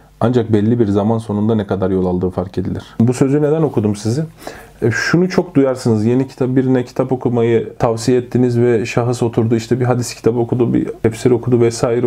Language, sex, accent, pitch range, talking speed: Turkish, male, native, 105-130 Hz, 195 wpm